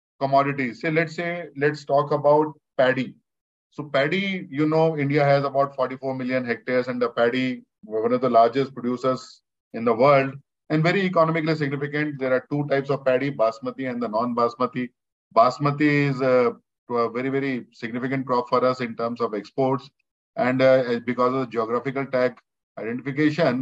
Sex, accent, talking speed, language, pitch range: male, Indian, 170 wpm, English, 125-155 Hz